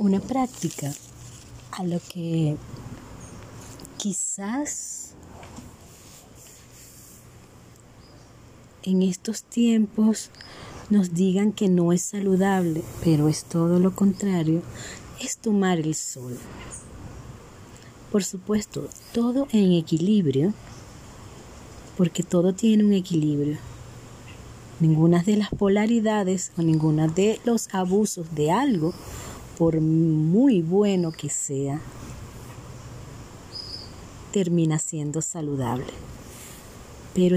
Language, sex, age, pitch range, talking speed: Spanish, female, 30-49, 135-195 Hz, 85 wpm